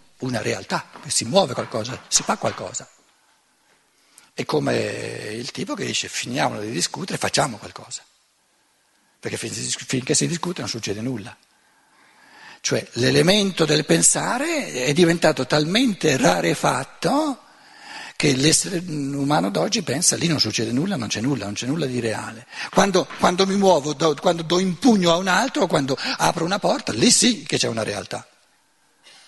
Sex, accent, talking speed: male, native, 145 wpm